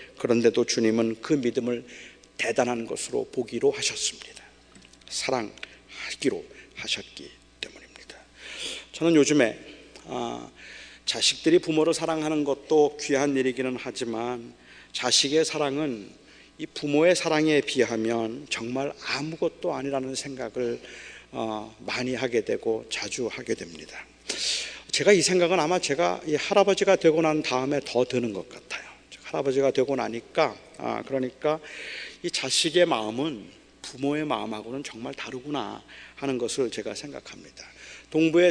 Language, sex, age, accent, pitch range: Korean, male, 40-59, native, 125-170 Hz